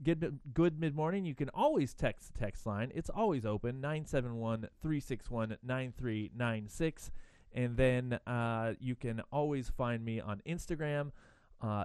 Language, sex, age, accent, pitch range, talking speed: English, male, 30-49, American, 110-150 Hz, 170 wpm